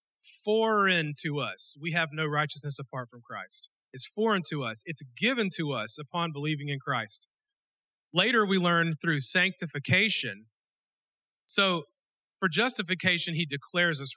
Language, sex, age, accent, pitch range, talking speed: English, male, 40-59, American, 140-180 Hz, 140 wpm